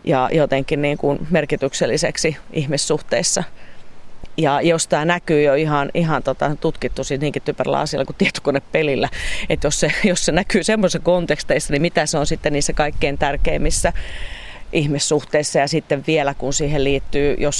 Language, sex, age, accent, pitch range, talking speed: Finnish, female, 40-59, native, 145-170 Hz, 150 wpm